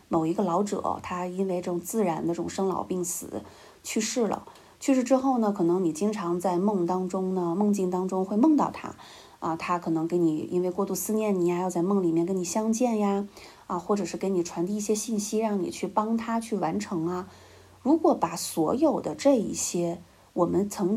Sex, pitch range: female, 175-225 Hz